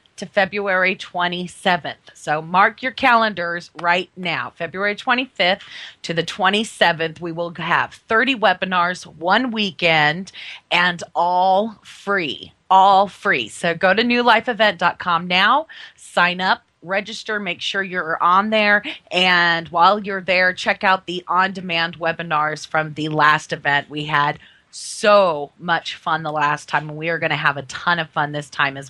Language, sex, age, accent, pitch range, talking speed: English, female, 30-49, American, 155-190 Hz, 150 wpm